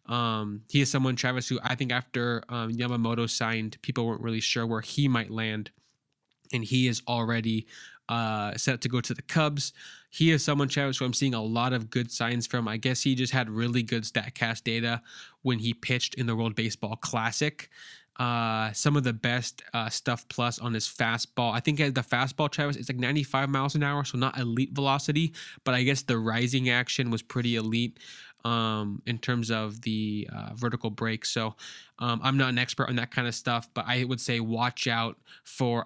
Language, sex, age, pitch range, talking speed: English, male, 10-29, 115-130 Hz, 205 wpm